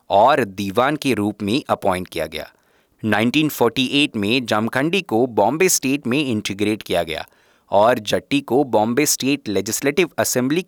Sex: male